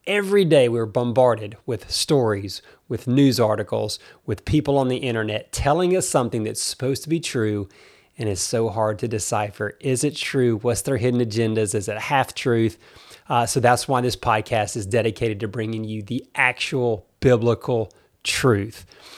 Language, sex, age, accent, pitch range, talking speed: English, male, 30-49, American, 115-150 Hz, 170 wpm